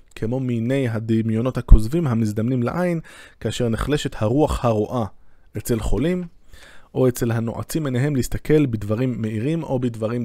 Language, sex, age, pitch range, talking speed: Hebrew, male, 20-39, 105-130 Hz, 125 wpm